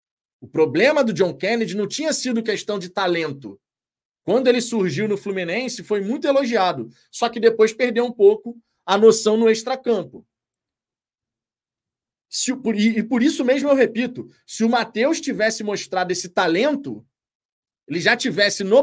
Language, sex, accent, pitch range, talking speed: Portuguese, male, Brazilian, 195-245 Hz, 145 wpm